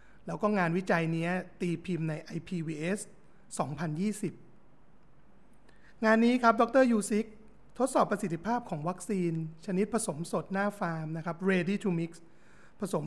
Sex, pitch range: male, 165-200 Hz